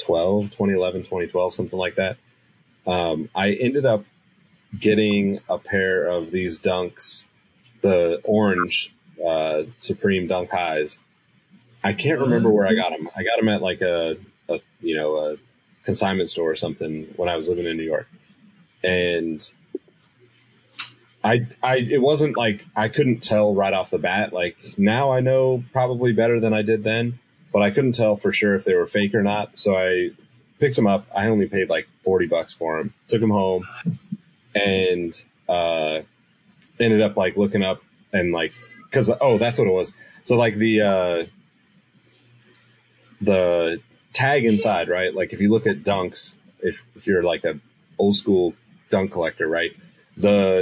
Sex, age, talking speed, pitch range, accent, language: male, 30-49, 165 wpm, 90-125 Hz, American, English